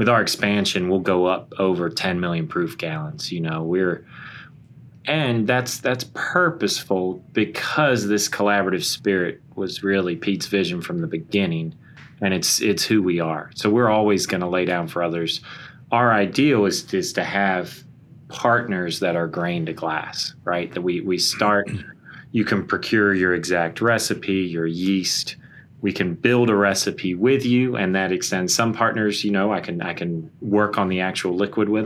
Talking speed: 175 wpm